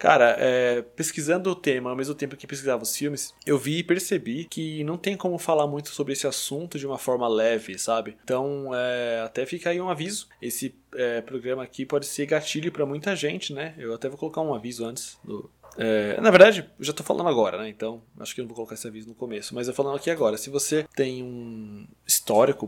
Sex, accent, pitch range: male, Brazilian, 120-150 Hz